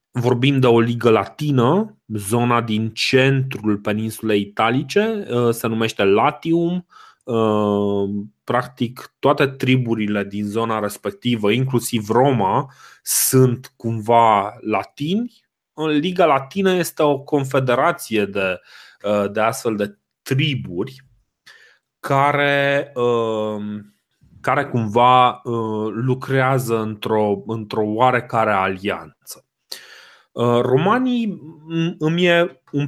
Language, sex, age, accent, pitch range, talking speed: Romanian, male, 20-39, native, 110-140 Hz, 80 wpm